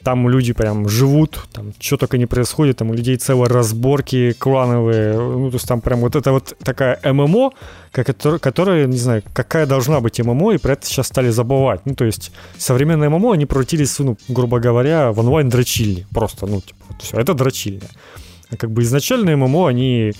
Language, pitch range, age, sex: Ukrainian, 110-135 Hz, 30-49, male